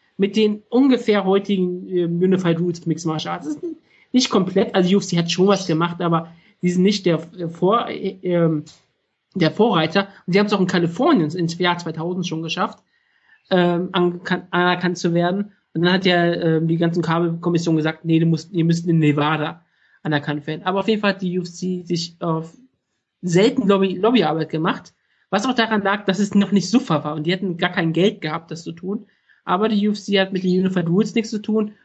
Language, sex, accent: German, male, German